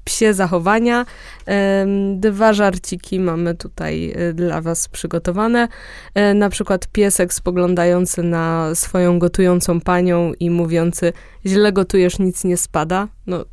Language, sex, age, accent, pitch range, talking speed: Polish, female, 20-39, native, 180-220 Hz, 110 wpm